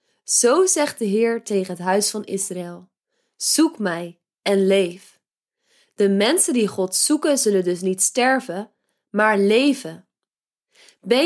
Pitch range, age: 195-245 Hz, 20-39